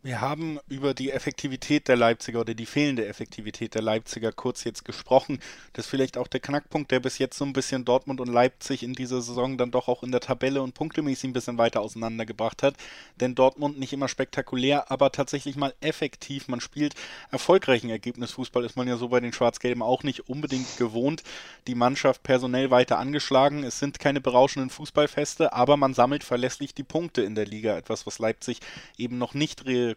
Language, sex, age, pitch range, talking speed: German, male, 20-39, 120-135 Hz, 195 wpm